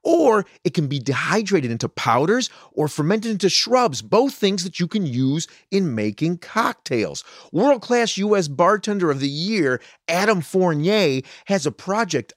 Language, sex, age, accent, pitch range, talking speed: English, male, 30-49, American, 125-190 Hz, 150 wpm